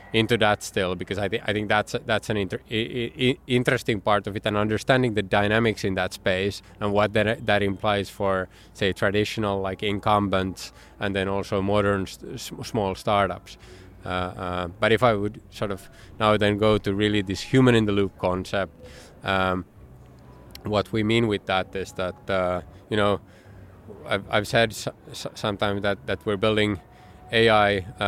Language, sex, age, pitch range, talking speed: Finnish, male, 20-39, 95-110 Hz, 175 wpm